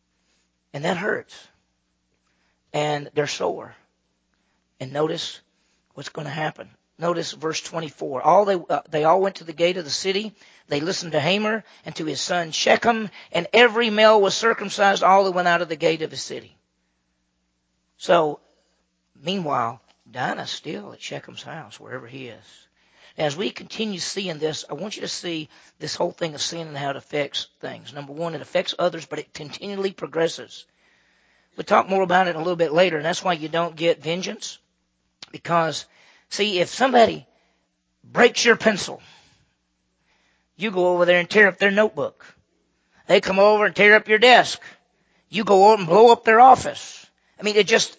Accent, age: American, 40-59